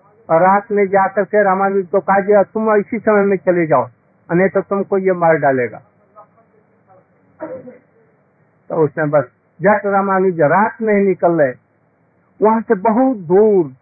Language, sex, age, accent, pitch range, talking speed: Hindi, male, 50-69, native, 170-205 Hz, 145 wpm